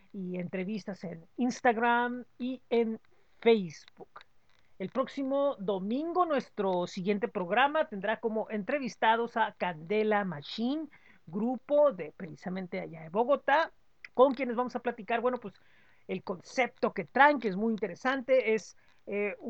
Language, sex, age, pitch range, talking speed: Spanish, female, 40-59, 190-250 Hz, 130 wpm